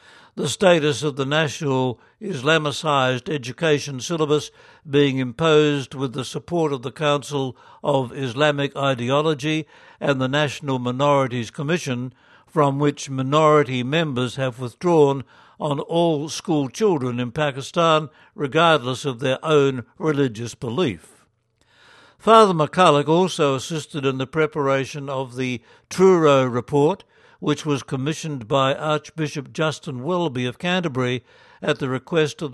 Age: 60-79